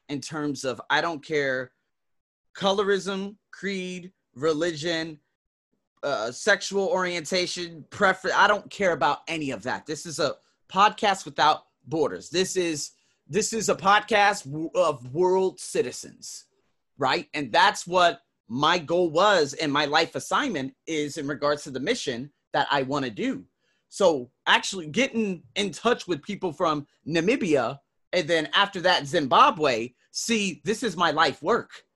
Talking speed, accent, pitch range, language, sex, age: 140 wpm, American, 155-215 Hz, English, male, 30-49